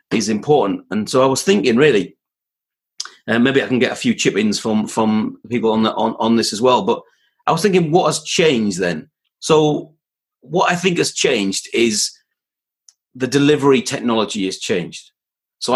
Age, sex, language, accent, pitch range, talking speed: 30-49, male, English, British, 120-175 Hz, 185 wpm